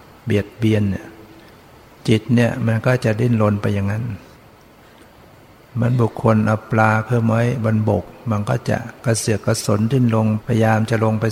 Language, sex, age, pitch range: Thai, male, 60-79, 105-120 Hz